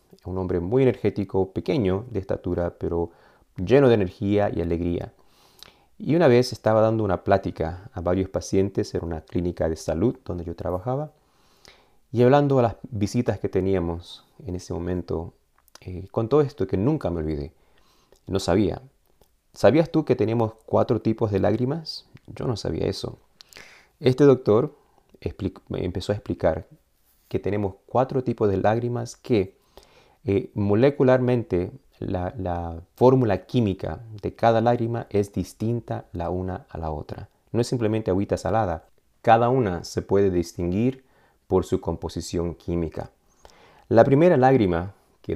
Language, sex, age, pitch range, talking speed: Spanish, male, 30-49, 90-120 Hz, 145 wpm